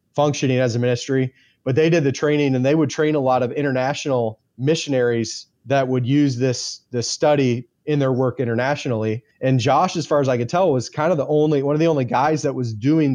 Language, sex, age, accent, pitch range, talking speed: English, male, 30-49, American, 120-140 Hz, 225 wpm